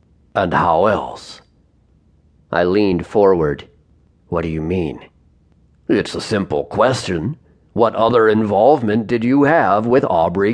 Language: English